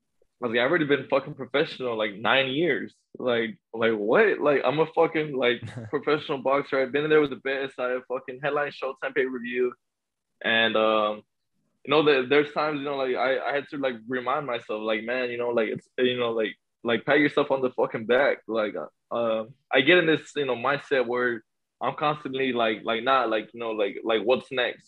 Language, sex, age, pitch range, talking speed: English, male, 20-39, 115-135 Hz, 215 wpm